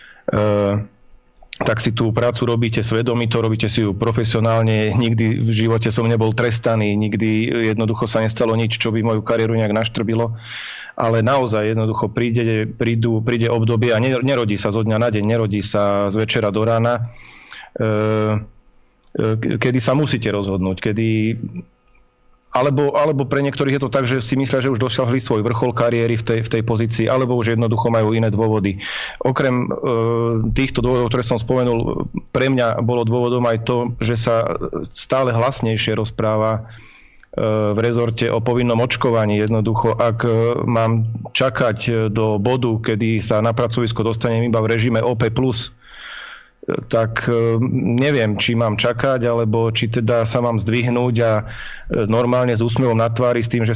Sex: male